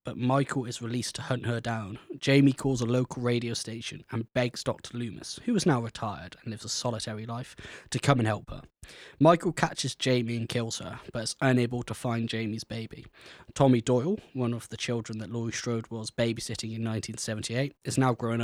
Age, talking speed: 20-39, 200 wpm